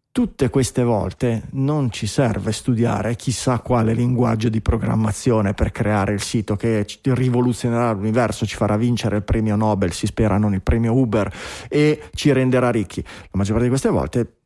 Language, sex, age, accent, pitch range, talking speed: Italian, male, 30-49, native, 105-135 Hz, 170 wpm